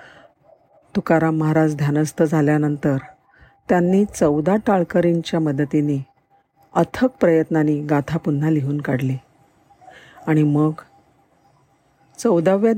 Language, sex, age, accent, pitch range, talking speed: Marathi, female, 50-69, native, 155-190 Hz, 80 wpm